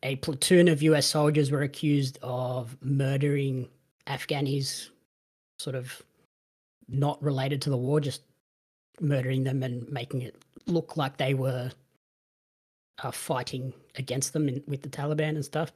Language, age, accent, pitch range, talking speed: English, 20-39, Australian, 130-150 Hz, 140 wpm